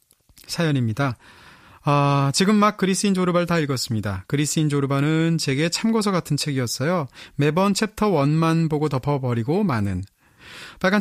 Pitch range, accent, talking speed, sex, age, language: 130-180 Hz, Korean, 115 wpm, male, 30-49, English